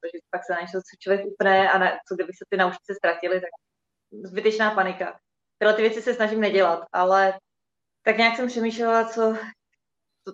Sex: female